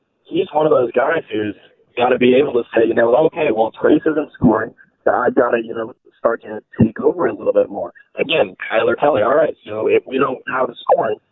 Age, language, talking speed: 30-49, English, 245 wpm